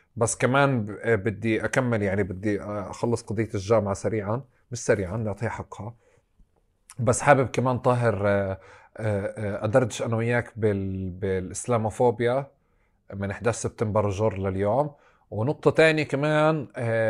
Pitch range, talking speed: 110-135 Hz, 105 wpm